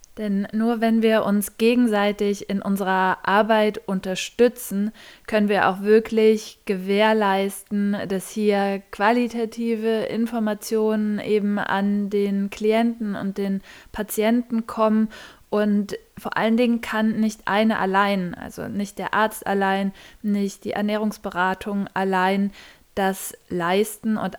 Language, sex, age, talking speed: German, female, 20-39, 115 wpm